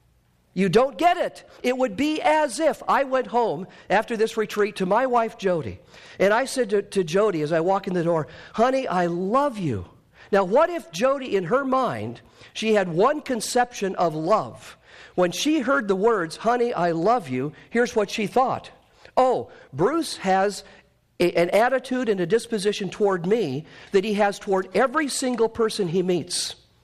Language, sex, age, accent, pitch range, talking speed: English, male, 50-69, American, 195-275 Hz, 180 wpm